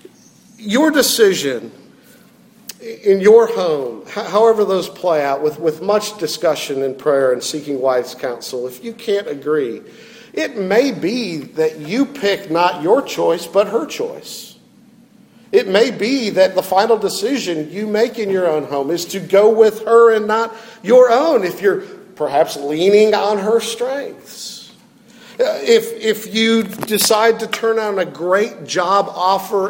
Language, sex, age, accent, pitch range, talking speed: English, male, 50-69, American, 190-230 Hz, 150 wpm